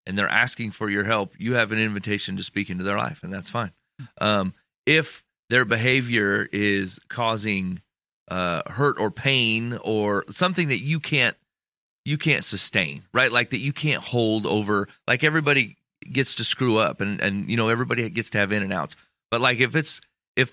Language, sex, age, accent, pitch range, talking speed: English, male, 30-49, American, 105-135 Hz, 190 wpm